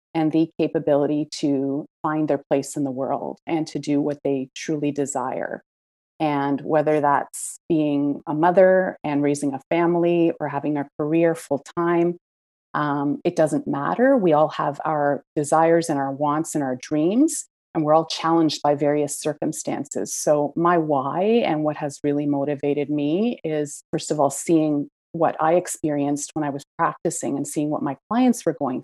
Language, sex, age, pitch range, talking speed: English, female, 30-49, 145-165 Hz, 170 wpm